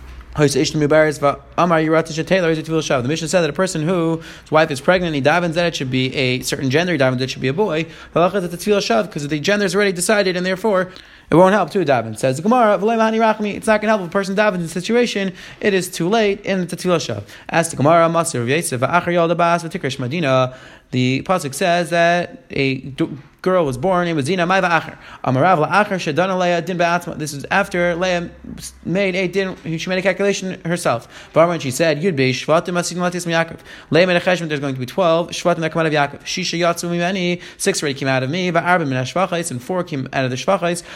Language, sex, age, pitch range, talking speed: English, male, 30-49, 150-185 Hz, 195 wpm